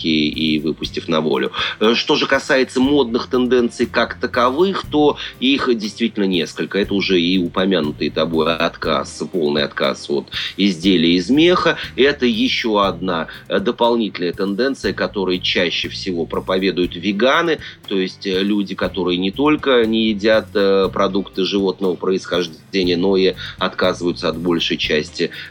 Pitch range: 90-110 Hz